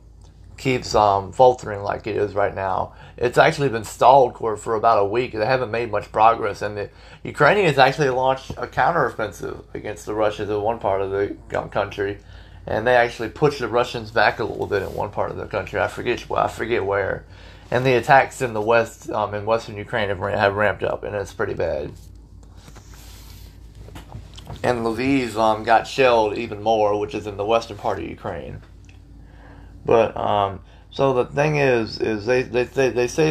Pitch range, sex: 95-120 Hz, male